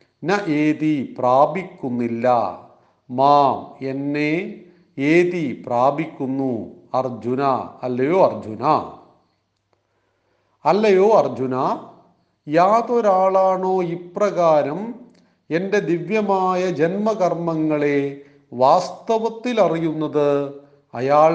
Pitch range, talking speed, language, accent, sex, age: 130-190 Hz, 50 wpm, Malayalam, native, male, 40-59